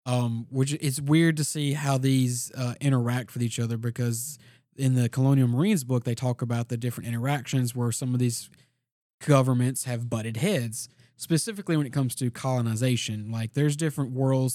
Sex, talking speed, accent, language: male, 175 wpm, American, English